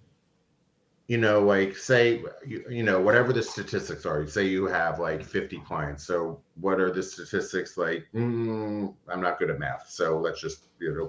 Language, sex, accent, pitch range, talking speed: English, male, American, 80-105 Hz, 180 wpm